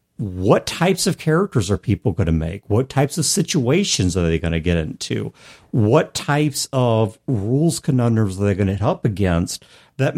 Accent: American